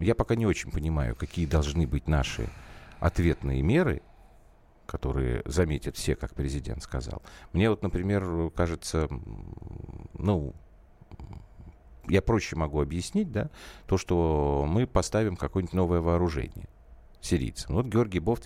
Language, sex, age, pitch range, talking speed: Russian, male, 50-69, 75-100 Hz, 125 wpm